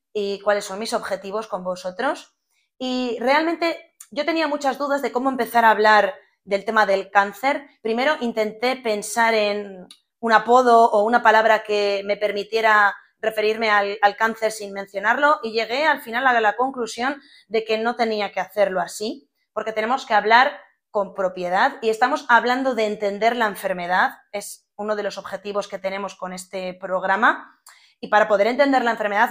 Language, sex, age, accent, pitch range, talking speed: Spanish, female, 20-39, Spanish, 200-240 Hz, 170 wpm